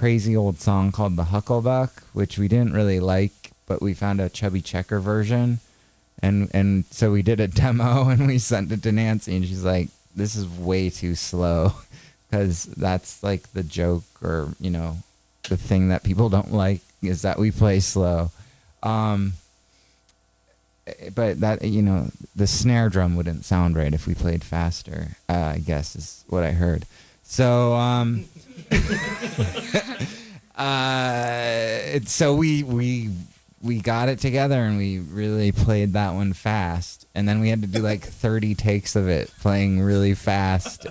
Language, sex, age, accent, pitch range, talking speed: English, male, 20-39, American, 90-110 Hz, 165 wpm